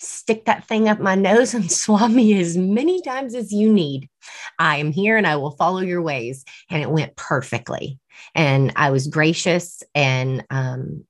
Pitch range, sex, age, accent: 140-180 Hz, female, 30-49, American